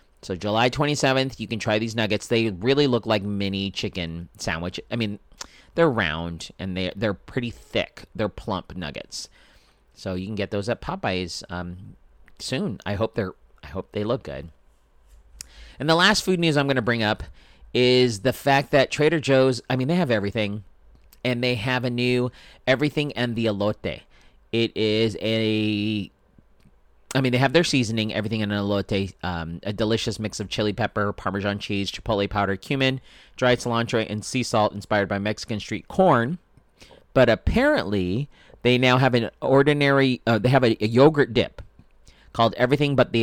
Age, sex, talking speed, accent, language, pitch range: 30-49, male, 175 wpm, American, English, 100-125 Hz